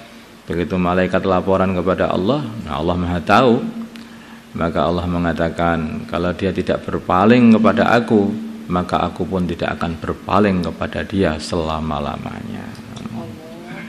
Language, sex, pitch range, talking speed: Indonesian, male, 90-125 Hz, 115 wpm